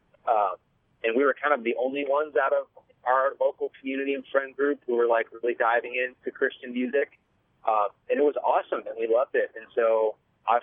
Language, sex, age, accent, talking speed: English, male, 30-49, American, 210 wpm